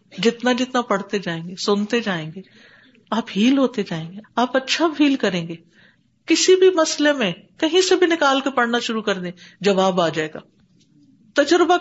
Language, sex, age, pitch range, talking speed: Urdu, female, 50-69, 190-270 Hz, 185 wpm